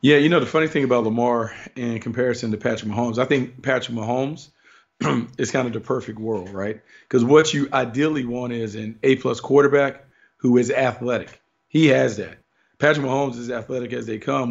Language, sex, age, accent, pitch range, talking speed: English, male, 40-59, American, 115-130 Hz, 190 wpm